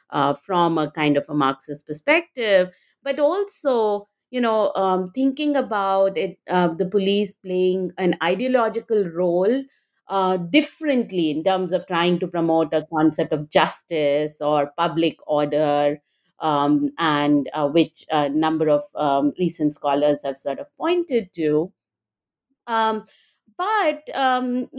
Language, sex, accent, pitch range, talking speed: English, female, Indian, 165-250 Hz, 135 wpm